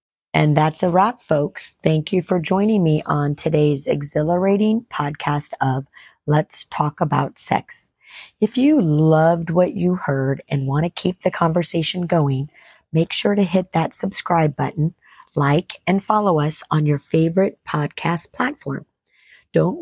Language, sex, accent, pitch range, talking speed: English, female, American, 155-200 Hz, 150 wpm